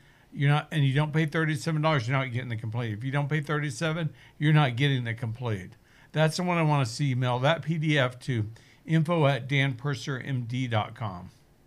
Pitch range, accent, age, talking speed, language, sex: 125-150 Hz, American, 60-79, 190 wpm, English, male